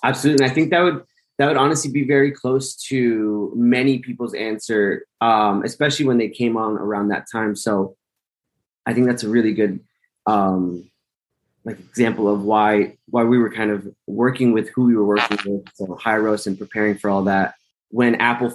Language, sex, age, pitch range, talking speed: English, male, 20-39, 100-120 Hz, 190 wpm